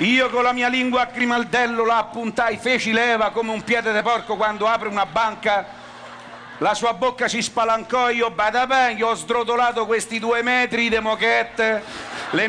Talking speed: 180 wpm